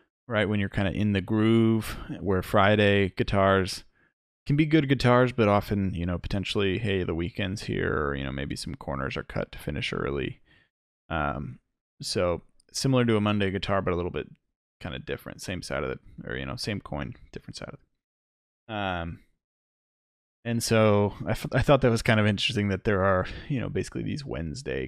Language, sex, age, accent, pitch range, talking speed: English, male, 20-39, American, 80-115 Hz, 200 wpm